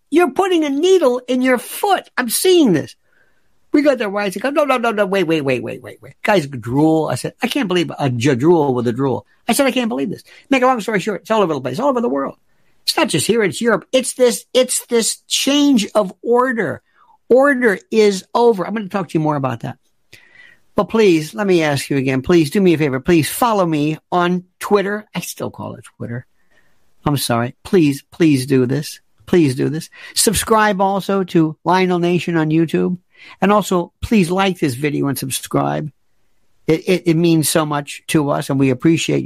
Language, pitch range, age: English, 140-215 Hz, 60-79